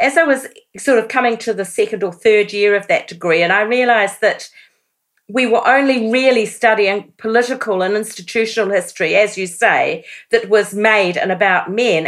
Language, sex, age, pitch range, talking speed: English, female, 50-69, 190-235 Hz, 185 wpm